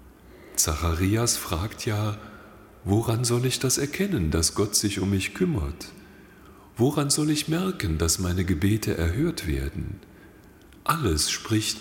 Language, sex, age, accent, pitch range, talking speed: German, male, 40-59, German, 80-110 Hz, 125 wpm